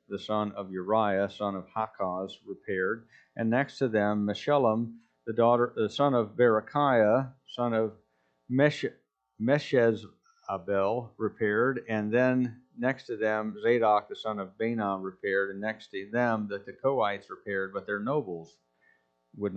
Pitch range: 95-120 Hz